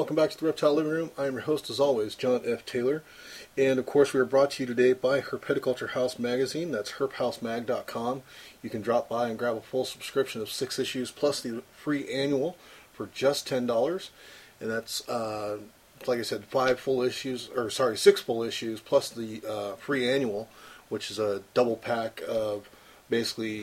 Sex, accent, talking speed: male, American, 195 wpm